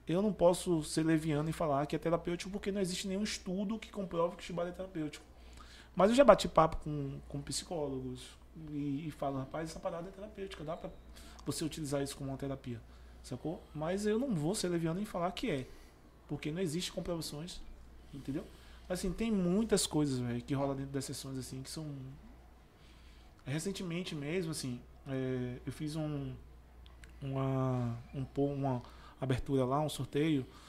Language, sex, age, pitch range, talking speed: Portuguese, male, 20-39, 130-170 Hz, 170 wpm